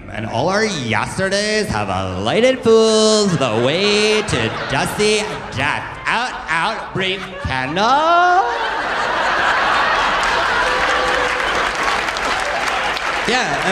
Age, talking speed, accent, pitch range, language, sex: 40-59, 80 wpm, American, 105-155 Hz, English, male